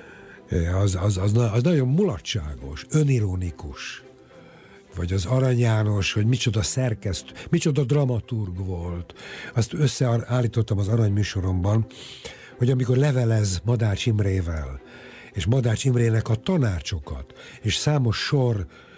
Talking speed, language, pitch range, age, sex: 110 wpm, Hungarian, 95-125 Hz, 60-79, male